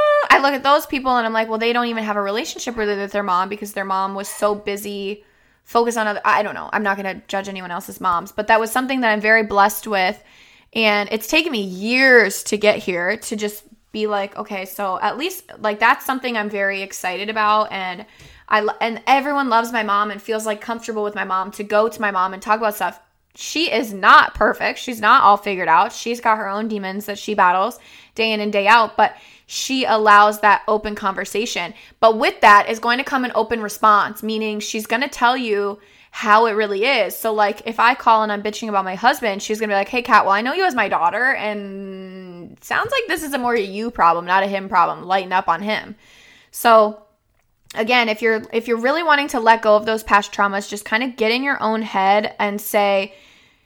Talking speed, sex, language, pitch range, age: 230 wpm, female, English, 200-230 Hz, 20-39